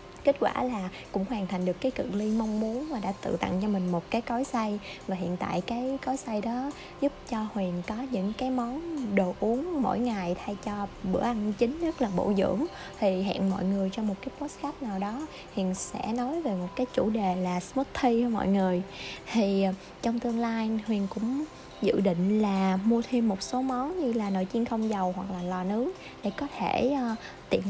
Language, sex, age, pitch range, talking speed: Vietnamese, female, 20-39, 195-250 Hz, 215 wpm